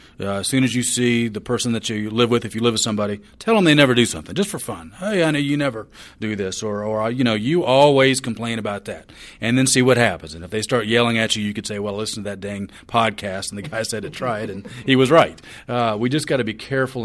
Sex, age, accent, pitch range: male, 40-59, American, 95-110 Hz